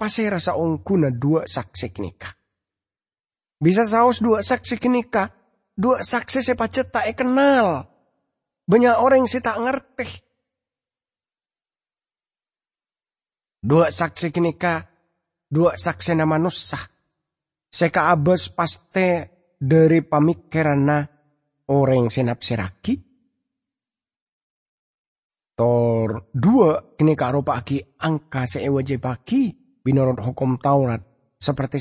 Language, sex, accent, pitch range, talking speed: English, male, Indonesian, 135-215 Hz, 90 wpm